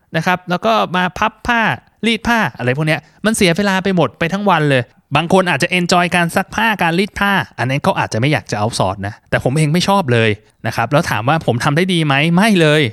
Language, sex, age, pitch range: Thai, male, 20-39, 130-180 Hz